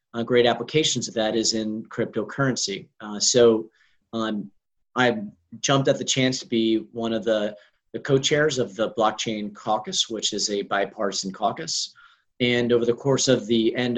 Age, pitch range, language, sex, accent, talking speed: 40-59, 110-130 Hz, English, male, American, 165 wpm